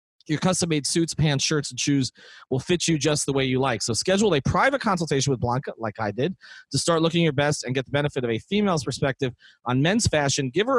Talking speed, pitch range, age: 240 wpm, 120-155 Hz, 30-49